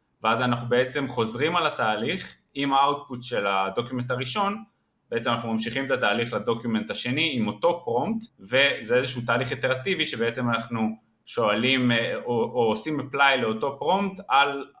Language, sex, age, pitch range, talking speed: Hebrew, male, 20-39, 110-145 Hz, 140 wpm